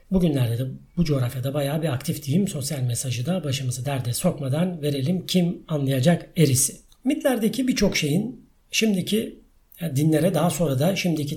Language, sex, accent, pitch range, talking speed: Turkish, male, native, 145-195 Hz, 145 wpm